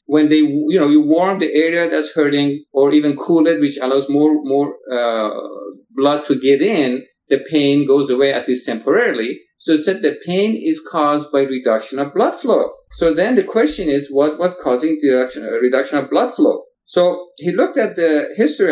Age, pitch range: 50-69, 140-190 Hz